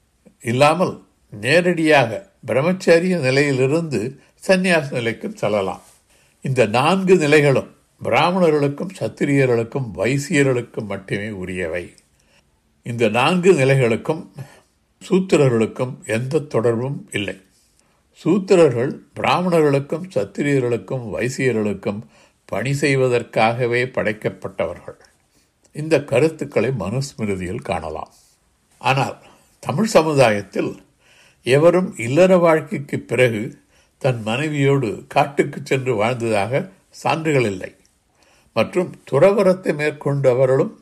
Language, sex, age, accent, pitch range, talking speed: Tamil, male, 60-79, native, 120-170 Hz, 70 wpm